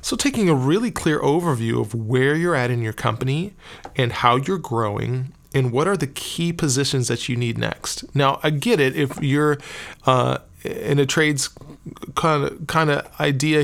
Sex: male